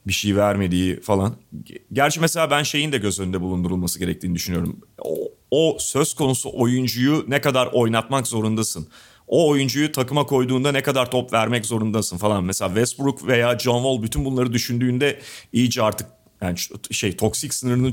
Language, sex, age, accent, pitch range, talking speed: Turkish, male, 40-59, native, 105-145 Hz, 155 wpm